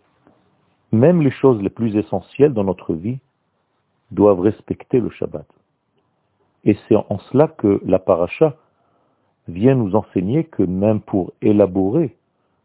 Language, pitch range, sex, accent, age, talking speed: French, 95-125 Hz, male, French, 50-69, 130 wpm